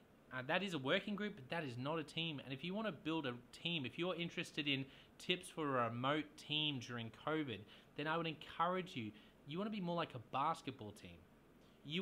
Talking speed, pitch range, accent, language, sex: 230 wpm, 125-165 Hz, Australian, English, male